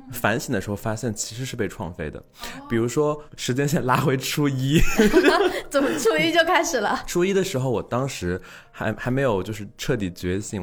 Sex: male